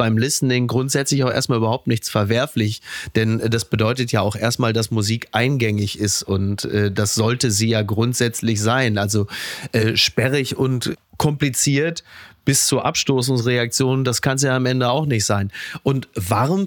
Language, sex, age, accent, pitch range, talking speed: German, male, 30-49, German, 110-145 Hz, 160 wpm